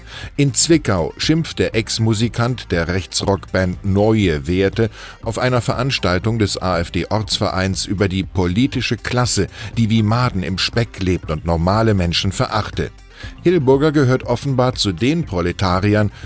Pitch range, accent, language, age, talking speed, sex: 90-115 Hz, German, German, 10-29, 125 wpm, male